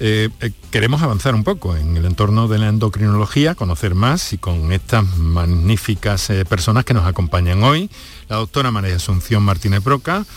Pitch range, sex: 95-120 Hz, male